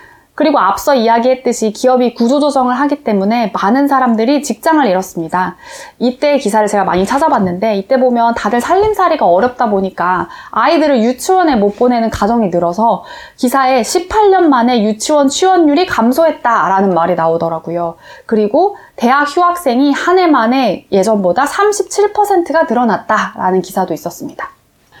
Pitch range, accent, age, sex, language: 210-325 Hz, native, 20-39, female, Korean